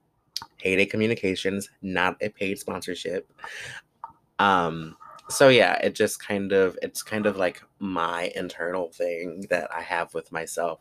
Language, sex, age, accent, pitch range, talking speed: English, male, 20-39, American, 90-120 Hz, 140 wpm